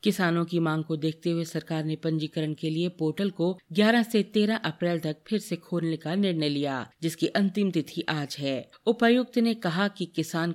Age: 40-59